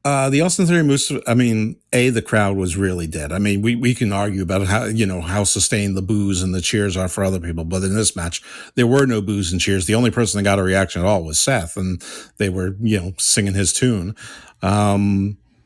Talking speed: 250 wpm